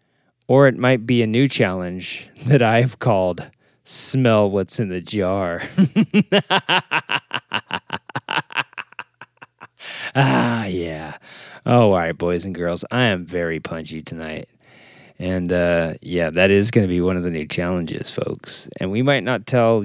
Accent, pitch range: American, 95-135 Hz